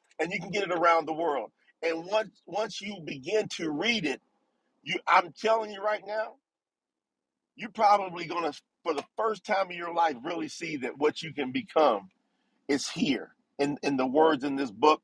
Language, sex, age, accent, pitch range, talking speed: English, male, 50-69, American, 155-220 Hz, 190 wpm